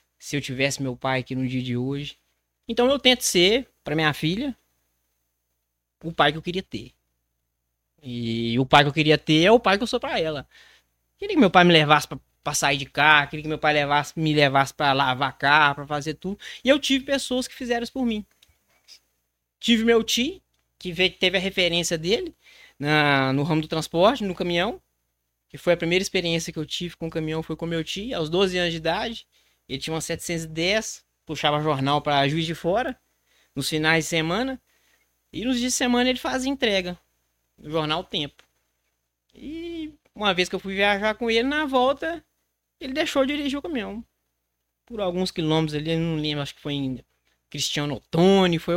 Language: Portuguese